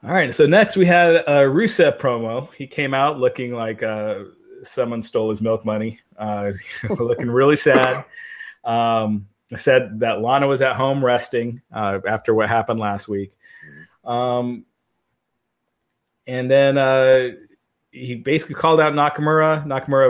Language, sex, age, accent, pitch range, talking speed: English, male, 30-49, American, 110-135 Hz, 145 wpm